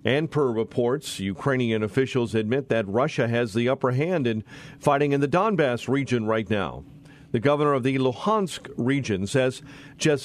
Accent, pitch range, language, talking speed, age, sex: American, 140-195 Hz, English, 165 wpm, 40-59, male